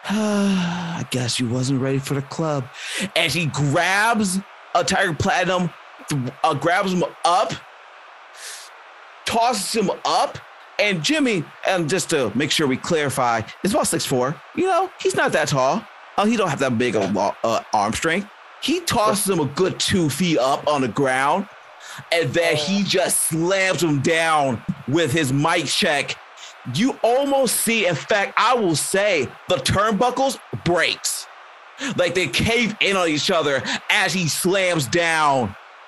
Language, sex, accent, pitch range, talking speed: English, male, American, 140-195 Hz, 155 wpm